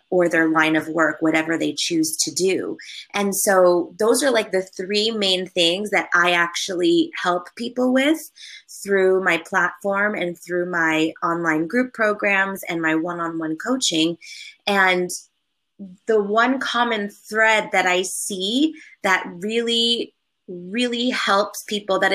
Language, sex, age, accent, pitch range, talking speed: English, female, 20-39, American, 170-215 Hz, 140 wpm